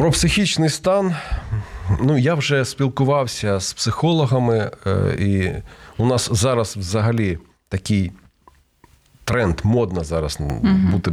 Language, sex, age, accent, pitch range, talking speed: Ukrainian, male, 40-59, native, 90-120 Hz, 100 wpm